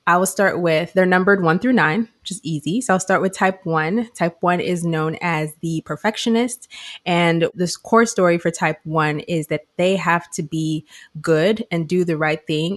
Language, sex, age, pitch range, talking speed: English, female, 20-39, 155-175 Hz, 205 wpm